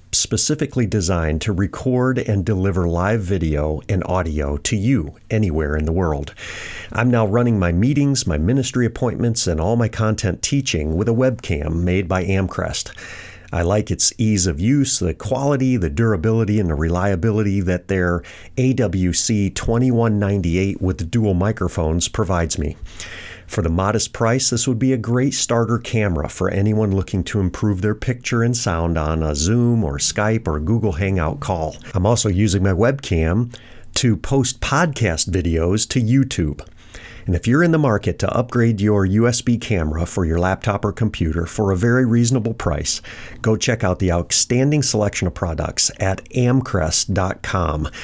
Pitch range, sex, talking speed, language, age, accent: 90-115 Hz, male, 160 wpm, English, 50-69, American